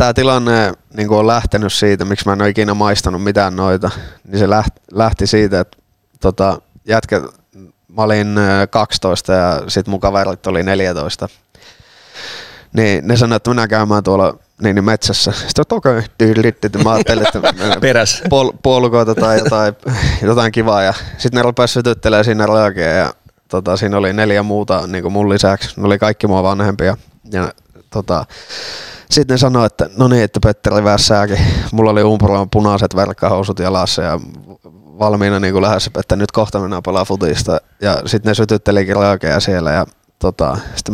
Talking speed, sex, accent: 160 wpm, male, native